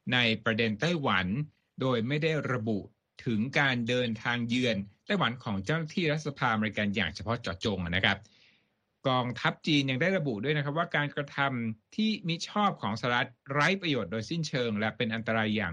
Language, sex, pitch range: Thai, male, 110-150 Hz